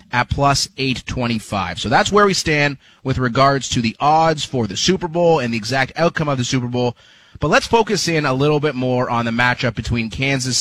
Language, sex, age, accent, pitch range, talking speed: English, male, 30-49, American, 120-160 Hz, 215 wpm